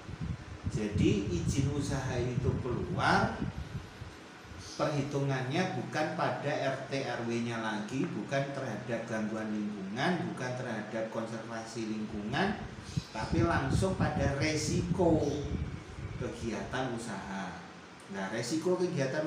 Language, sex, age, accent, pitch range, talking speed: Indonesian, male, 40-59, native, 120-160 Hz, 85 wpm